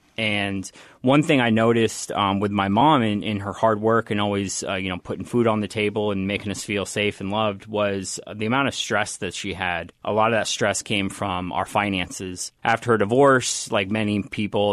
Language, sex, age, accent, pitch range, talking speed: English, male, 30-49, American, 100-120 Hz, 220 wpm